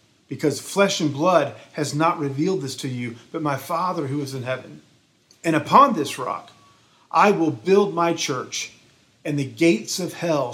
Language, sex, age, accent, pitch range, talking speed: English, male, 40-59, American, 145-200 Hz, 175 wpm